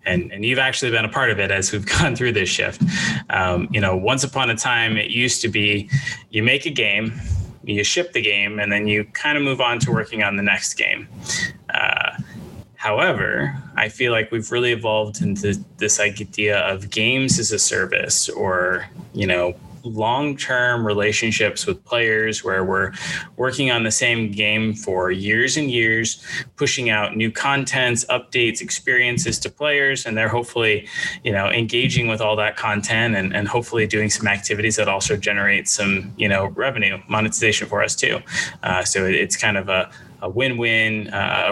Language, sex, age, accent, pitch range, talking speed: English, male, 20-39, American, 105-120 Hz, 180 wpm